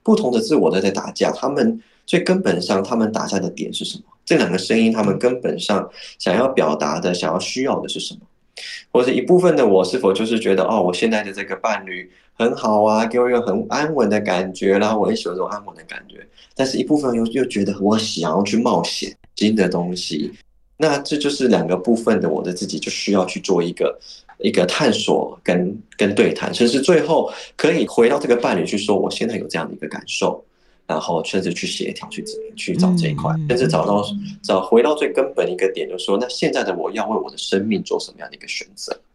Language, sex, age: Chinese, male, 20-39